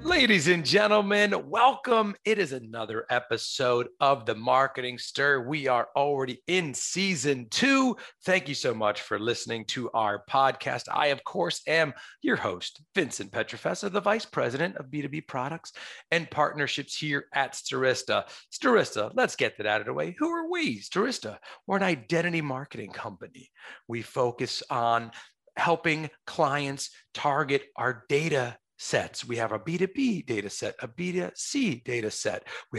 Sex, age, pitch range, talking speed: male, 40-59, 135-205 Hz, 150 wpm